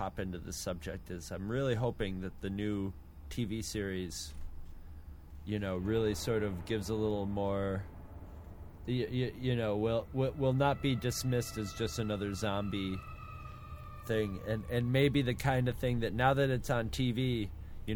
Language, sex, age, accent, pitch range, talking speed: English, male, 30-49, American, 95-125 Hz, 160 wpm